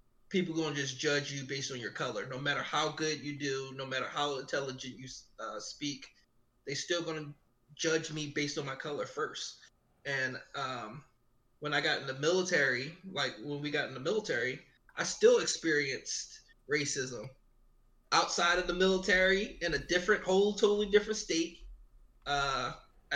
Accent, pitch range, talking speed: American, 135-180 Hz, 170 wpm